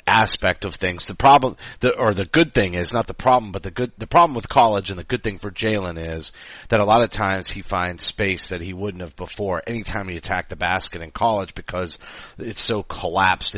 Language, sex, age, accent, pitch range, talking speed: English, male, 30-49, American, 95-115 Hz, 225 wpm